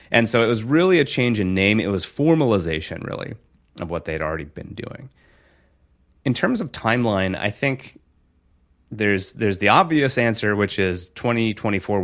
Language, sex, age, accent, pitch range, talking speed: Danish, male, 30-49, American, 80-105 Hz, 165 wpm